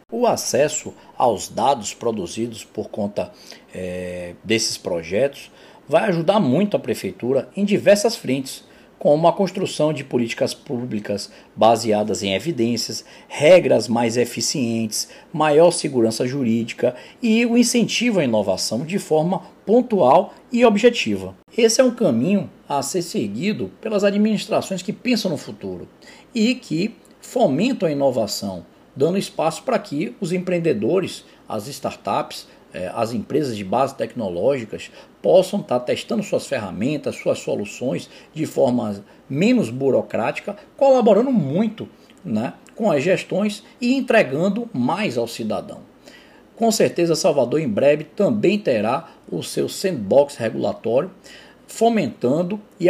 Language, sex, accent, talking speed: Portuguese, male, Brazilian, 125 wpm